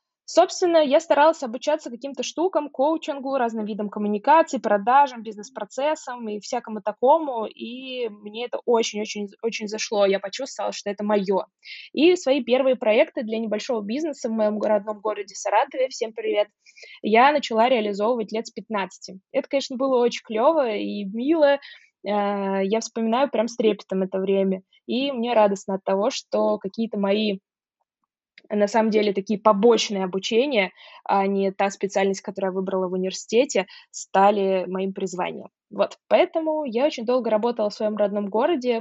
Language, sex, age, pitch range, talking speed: Russian, female, 20-39, 205-265 Hz, 150 wpm